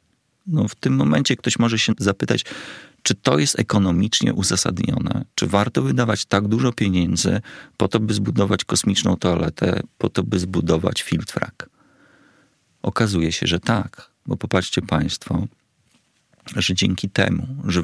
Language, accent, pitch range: Polish, native, 85-100 Hz